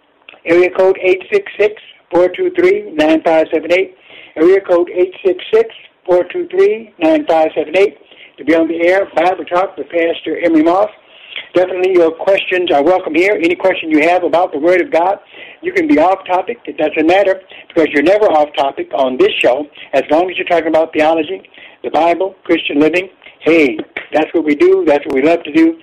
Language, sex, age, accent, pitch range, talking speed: English, male, 60-79, American, 160-210 Hz, 155 wpm